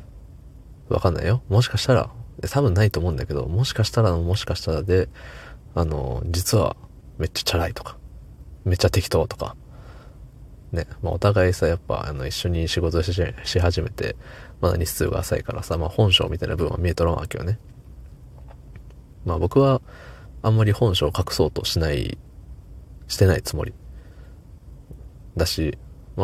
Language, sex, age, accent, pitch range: Japanese, male, 20-39, native, 80-100 Hz